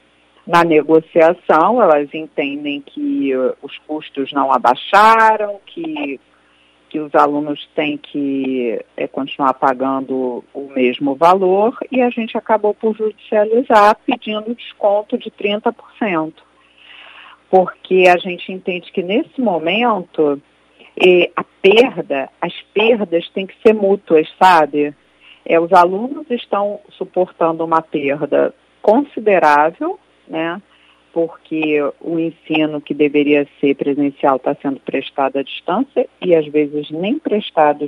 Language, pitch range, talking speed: Portuguese, 145-230 Hz, 110 wpm